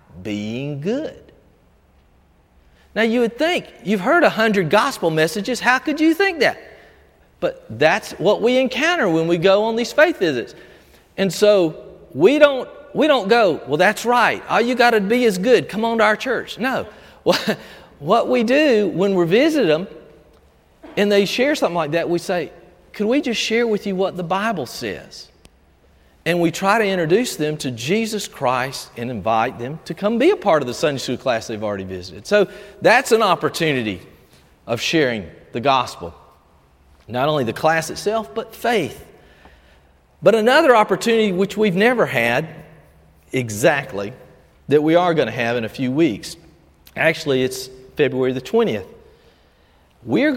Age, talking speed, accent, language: 40-59, 170 wpm, American, English